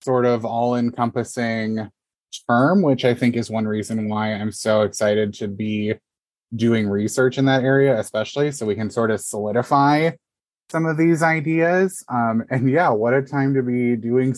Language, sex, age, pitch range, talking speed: English, male, 20-39, 110-130 Hz, 175 wpm